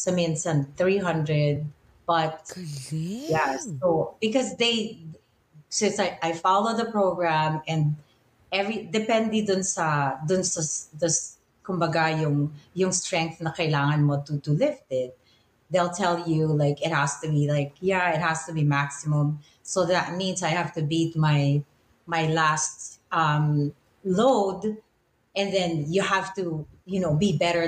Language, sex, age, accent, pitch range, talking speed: Filipino, female, 30-49, native, 155-195 Hz, 150 wpm